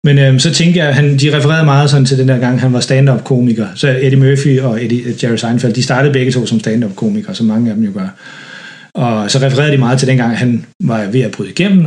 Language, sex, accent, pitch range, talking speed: Danish, male, native, 125-155 Hz, 255 wpm